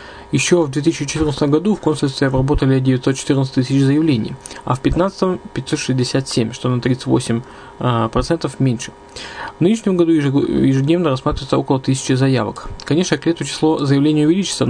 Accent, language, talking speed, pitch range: native, Russian, 125 wpm, 130-155 Hz